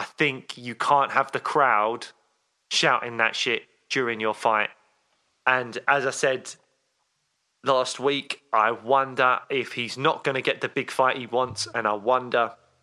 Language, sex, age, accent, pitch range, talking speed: English, male, 20-39, British, 125-145 Hz, 165 wpm